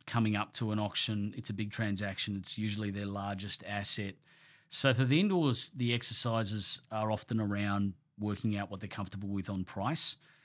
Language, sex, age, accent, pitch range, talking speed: English, male, 40-59, Australian, 100-125 Hz, 180 wpm